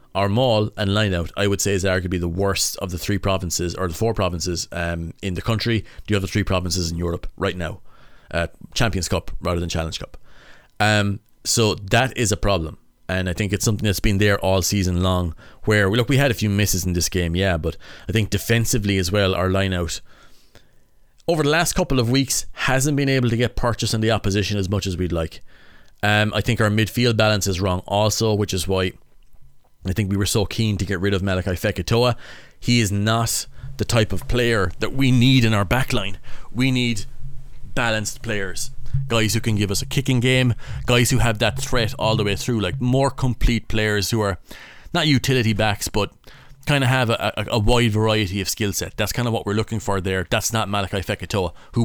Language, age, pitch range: English, 30-49, 95-120 Hz